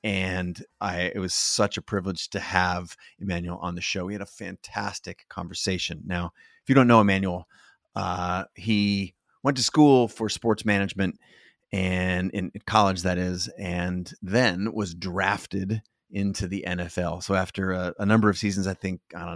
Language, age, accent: English, 30-49, American